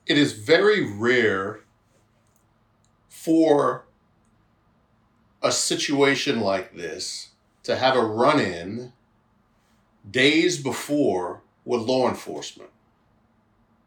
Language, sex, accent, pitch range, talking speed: English, male, American, 110-150 Hz, 80 wpm